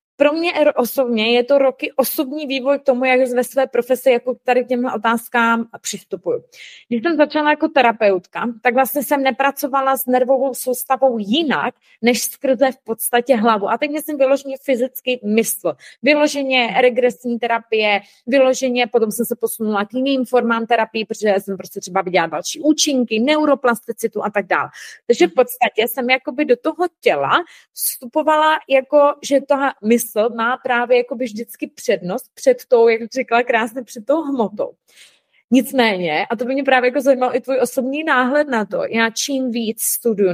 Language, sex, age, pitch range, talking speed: Czech, female, 20-39, 235-275 Hz, 160 wpm